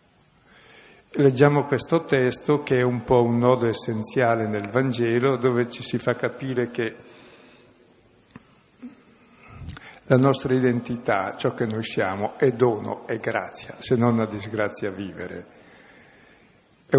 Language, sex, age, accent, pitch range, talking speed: Italian, male, 50-69, native, 110-130 Hz, 125 wpm